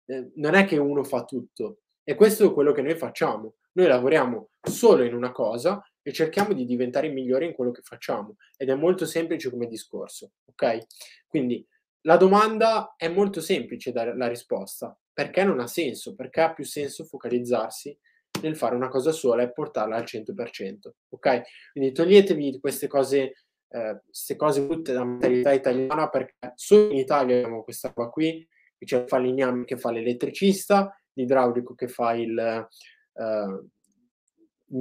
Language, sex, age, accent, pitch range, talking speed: Italian, male, 20-39, native, 120-175 Hz, 160 wpm